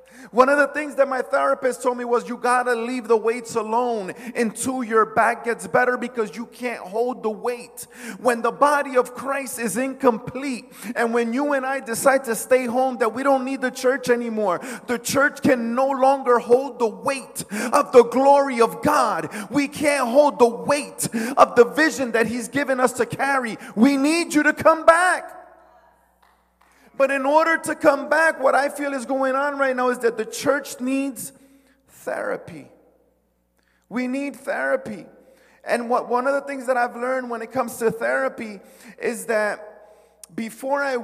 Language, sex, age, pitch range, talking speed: English, male, 30-49, 220-270 Hz, 185 wpm